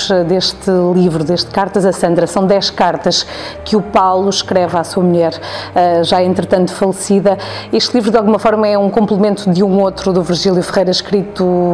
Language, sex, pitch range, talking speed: Portuguese, female, 185-215 Hz, 175 wpm